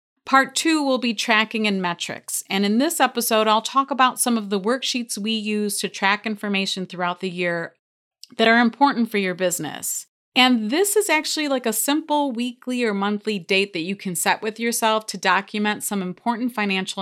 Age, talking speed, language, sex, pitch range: 30-49, 190 wpm, English, female, 180-240 Hz